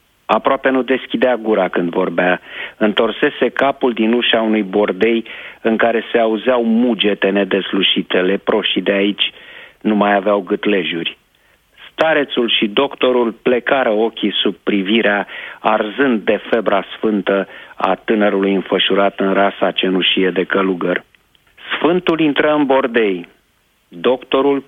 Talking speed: 120 wpm